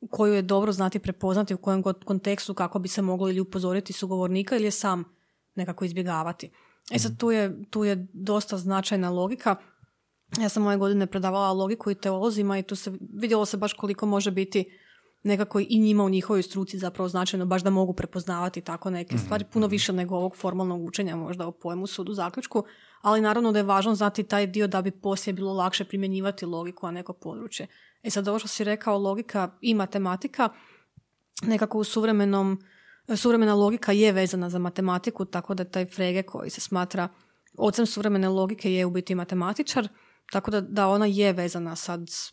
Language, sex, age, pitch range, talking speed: Croatian, female, 30-49, 185-205 Hz, 185 wpm